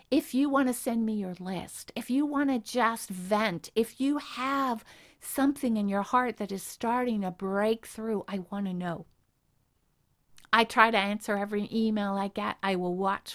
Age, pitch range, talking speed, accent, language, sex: 50-69, 190-245 Hz, 185 wpm, American, English, female